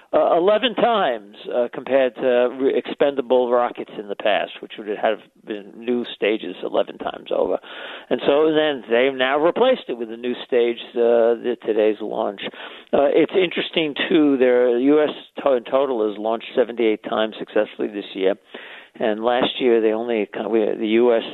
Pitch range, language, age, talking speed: 115-140 Hz, English, 50-69, 175 wpm